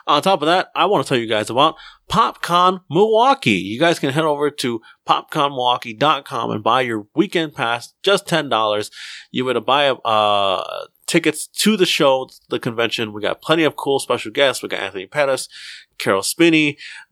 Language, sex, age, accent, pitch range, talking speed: English, male, 30-49, American, 110-155 Hz, 175 wpm